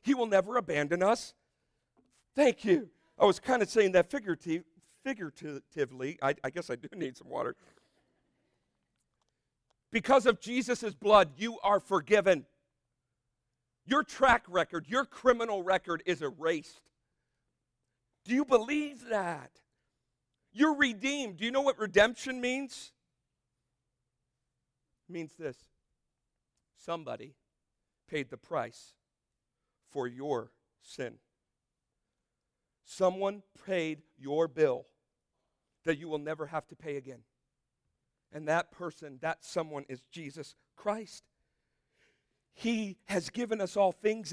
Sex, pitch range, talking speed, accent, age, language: male, 140-210 Hz, 115 wpm, American, 50-69, English